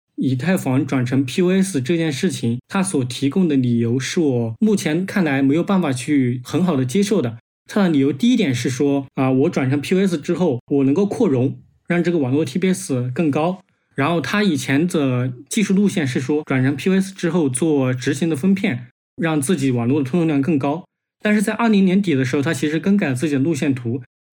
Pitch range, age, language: 135-190 Hz, 20-39, Chinese